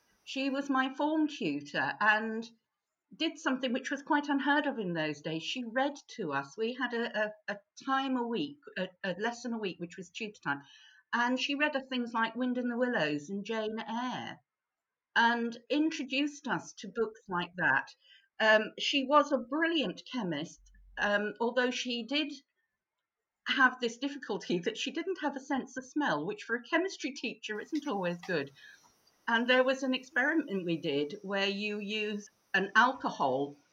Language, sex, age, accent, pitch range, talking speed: English, female, 50-69, British, 200-270 Hz, 175 wpm